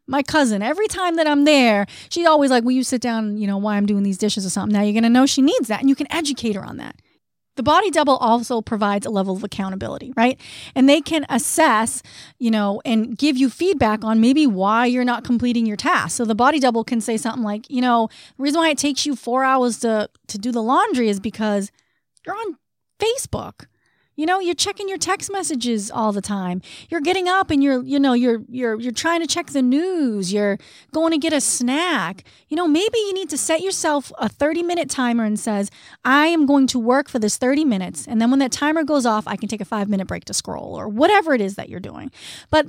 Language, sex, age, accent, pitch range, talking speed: English, female, 30-49, American, 220-300 Hz, 240 wpm